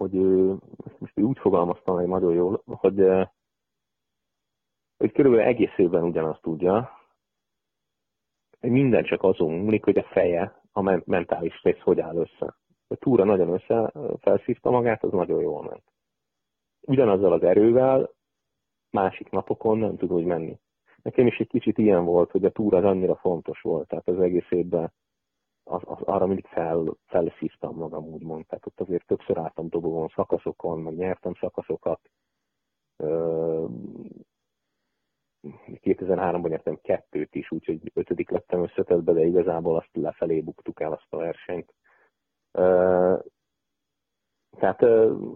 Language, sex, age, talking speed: Hungarian, male, 40-59, 130 wpm